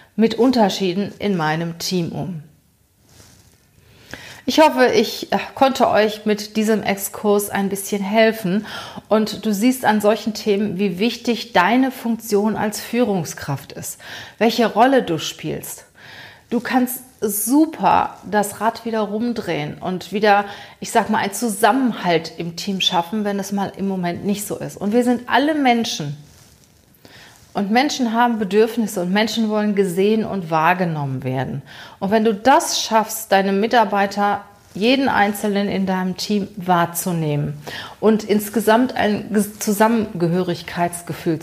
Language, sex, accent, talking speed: German, female, German, 135 wpm